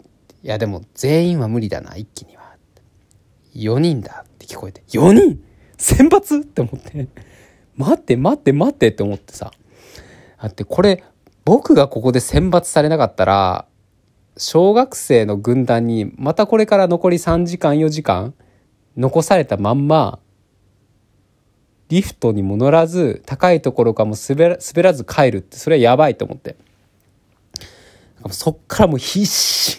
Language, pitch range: Japanese, 105-155 Hz